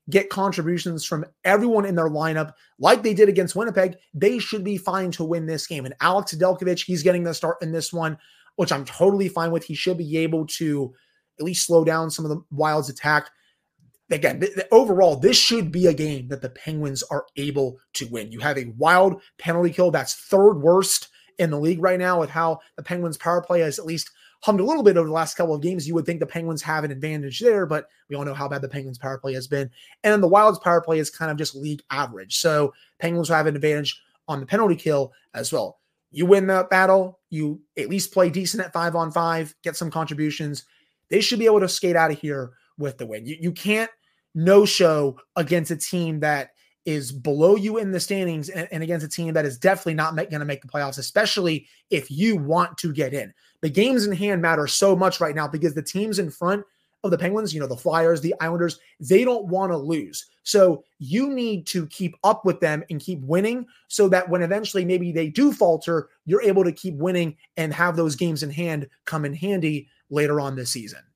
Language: English